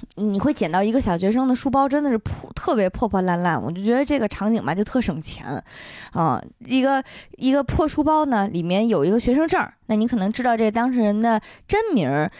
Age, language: 20-39, Chinese